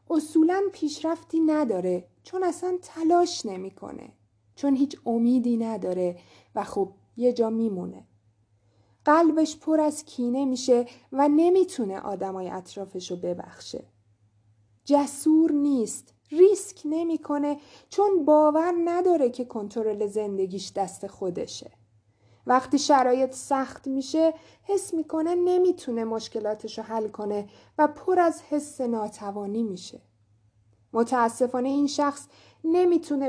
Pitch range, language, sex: 205-310 Hz, Persian, female